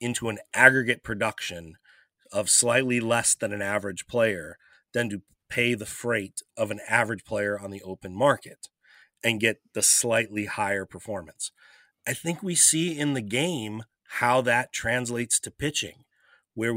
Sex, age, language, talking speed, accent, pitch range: male, 30-49, English, 155 wpm, American, 105-130 Hz